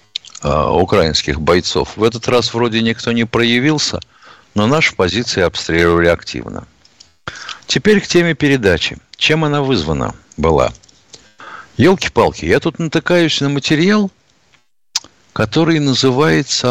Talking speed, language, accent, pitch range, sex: 110 wpm, Russian, native, 105-155 Hz, male